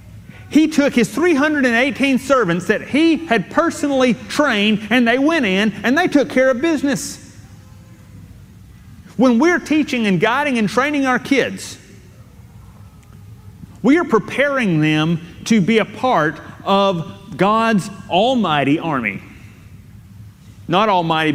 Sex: male